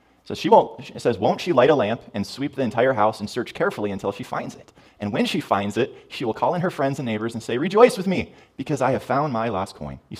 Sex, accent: male, American